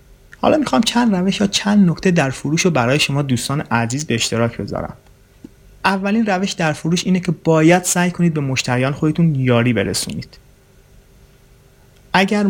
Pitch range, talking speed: 130-175 Hz, 160 wpm